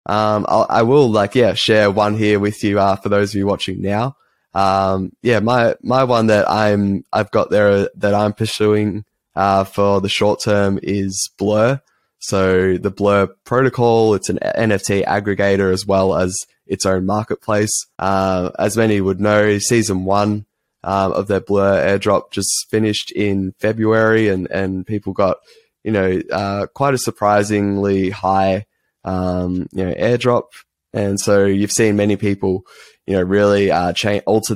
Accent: Australian